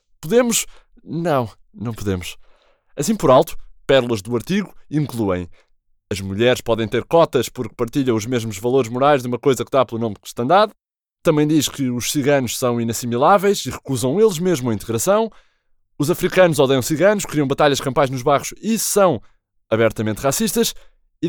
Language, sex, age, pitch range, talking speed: Portuguese, male, 20-39, 110-175 Hz, 160 wpm